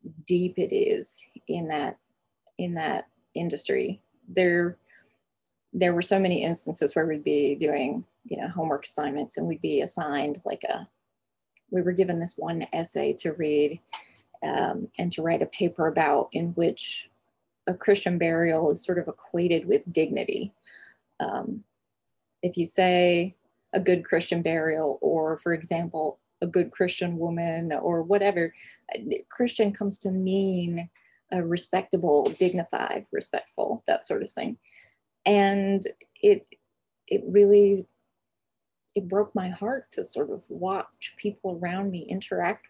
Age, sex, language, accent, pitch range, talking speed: 20-39, female, English, American, 165-200 Hz, 140 wpm